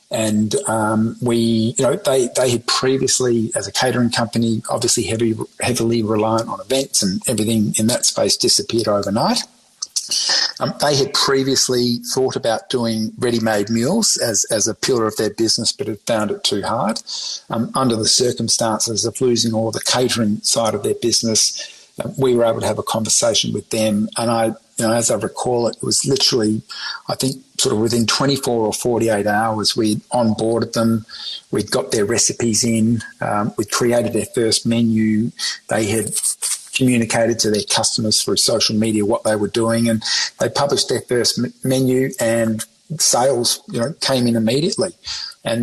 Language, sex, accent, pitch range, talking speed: English, male, Australian, 110-125 Hz, 170 wpm